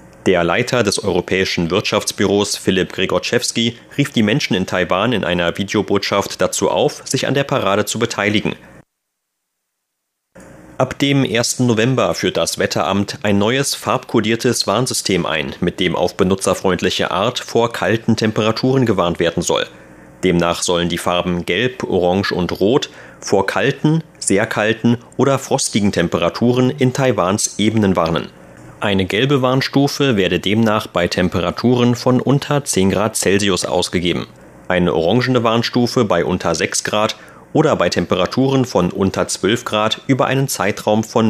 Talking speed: 140 wpm